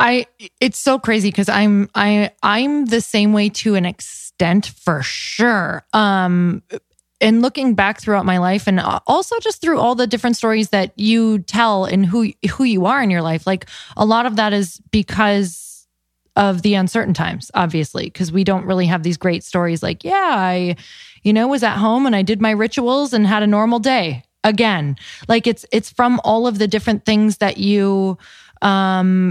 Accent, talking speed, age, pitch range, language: American, 190 wpm, 20-39, 185-225 Hz, English